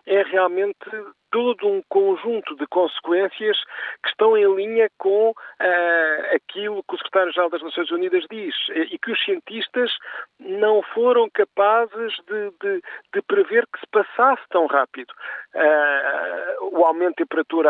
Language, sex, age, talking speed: Portuguese, male, 50-69, 140 wpm